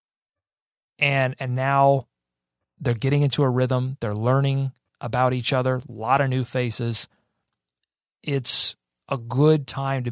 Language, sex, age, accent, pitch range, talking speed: English, male, 30-49, American, 115-150 Hz, 135 wpm